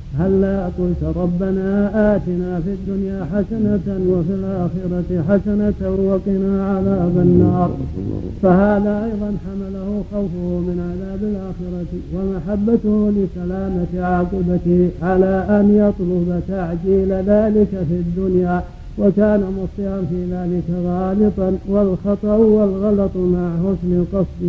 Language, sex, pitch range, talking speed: Arabic, male, 180-200 Hz, 100 wpm